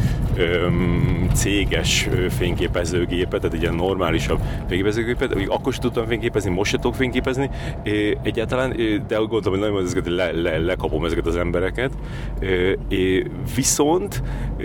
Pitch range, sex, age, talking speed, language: 85-125 Hz, male, 30-49, 115 wpm, Hungarian